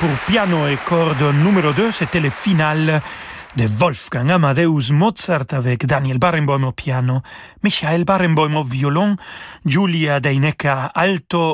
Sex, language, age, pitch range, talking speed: male, French, 40-59, 135-175 Hz, 130 wpm